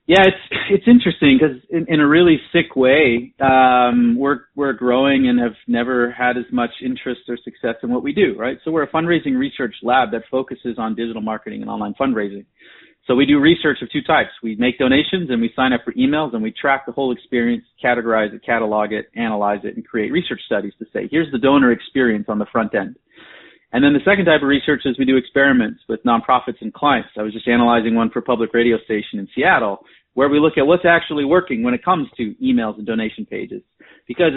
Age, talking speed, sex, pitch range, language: 30-49, 225 wpm, male, 120-160 Hz, English